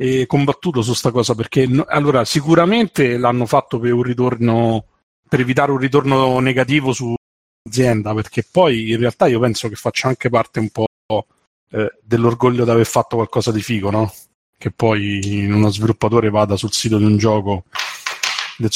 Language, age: Italian, 30-49